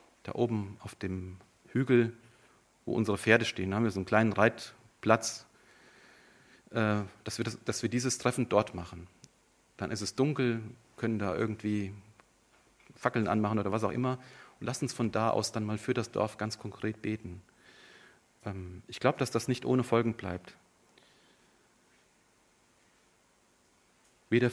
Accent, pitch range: German, 105-125 Hz